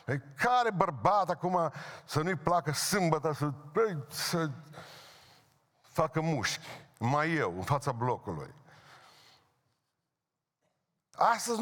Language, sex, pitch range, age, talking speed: Romanian, male, 145-185 Hz, 50-69, 90 wpm